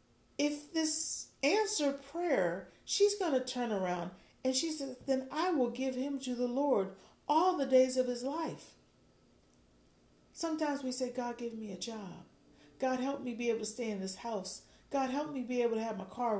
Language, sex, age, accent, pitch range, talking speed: English, female, 40-59, American, 210-270 Hz, 195 wpm